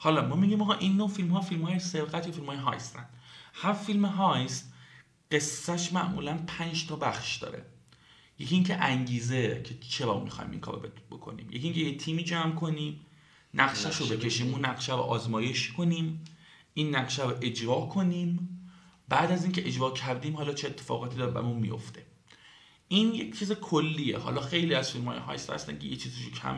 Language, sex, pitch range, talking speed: Persian, male, 120-160 Hz, 165 wpm